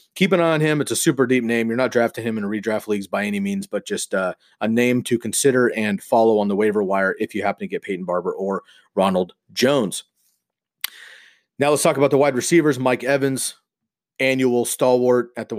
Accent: American